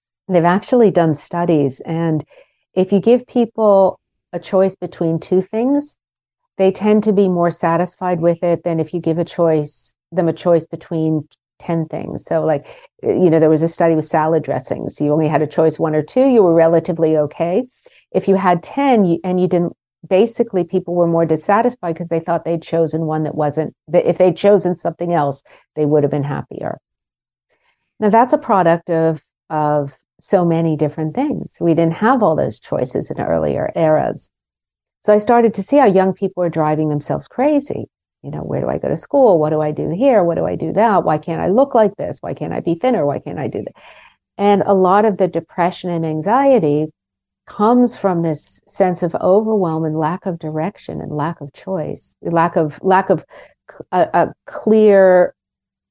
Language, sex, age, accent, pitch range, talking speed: English, female, 50-69, American, 160-200 Hz, 195 wpm